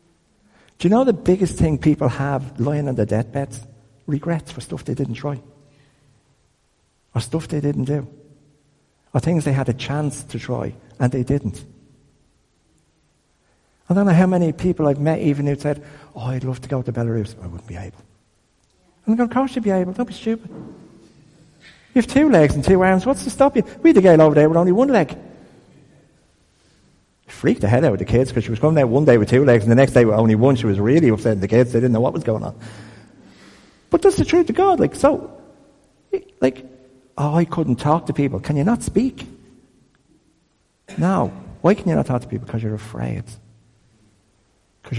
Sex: male